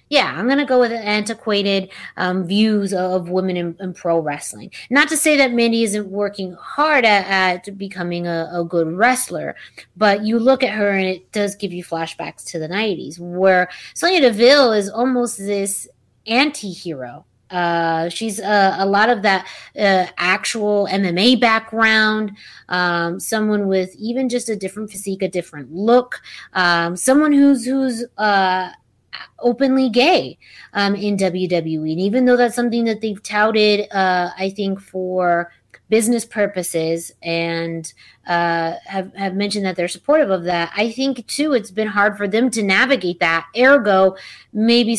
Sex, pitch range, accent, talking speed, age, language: female, 180-225 Hz, American, 160 wpm, 20-39, English